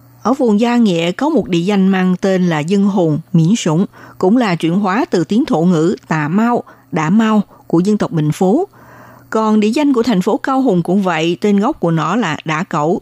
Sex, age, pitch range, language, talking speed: female, 60-79, 165-225 Hz, Vietnamese, 225 wpm